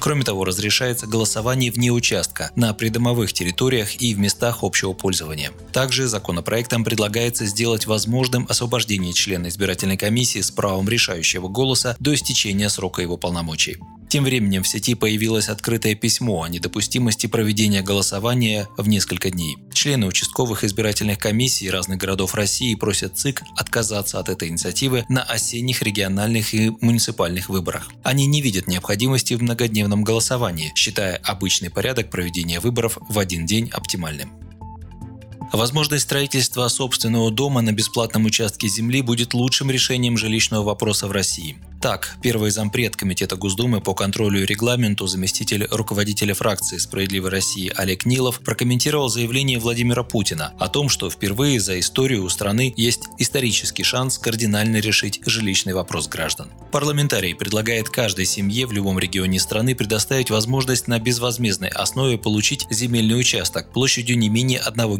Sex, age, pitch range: male, 20-39, 100-120 Hz